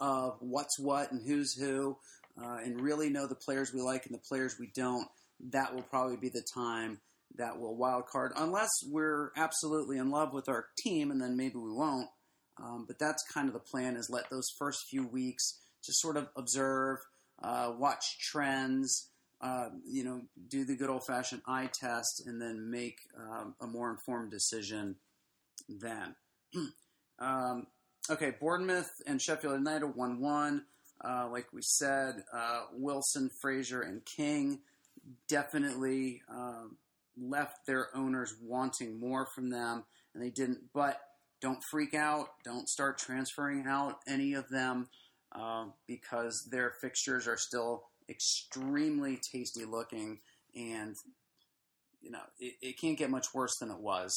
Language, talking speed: English, 155 wpm